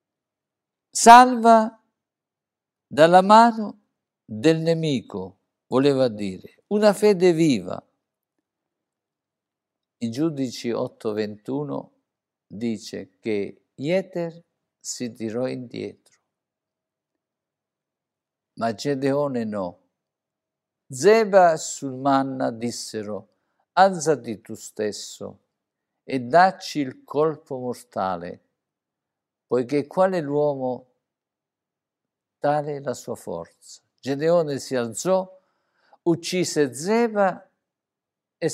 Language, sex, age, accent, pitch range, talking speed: Italian, male, 50-69, native, 125-180 Hz, 75 wpm